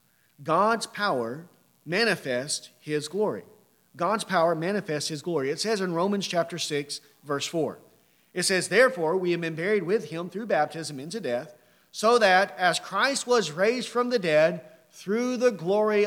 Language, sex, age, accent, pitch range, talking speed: English, male, 40-59, American, 170-245 Hz, 160 wpm